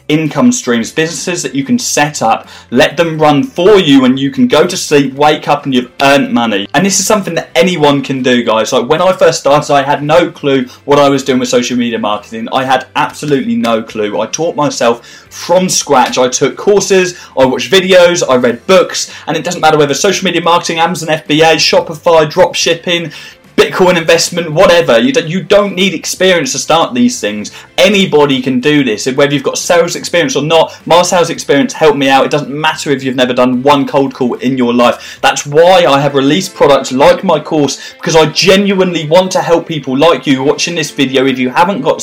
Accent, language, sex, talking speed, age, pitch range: British, English, male, 215 wpm, 20-39, 135-175 Hz